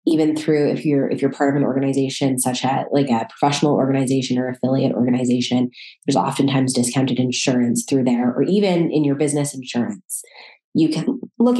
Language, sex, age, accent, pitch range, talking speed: English, female, 20-39, American, 135-165 Hz, 175 wpm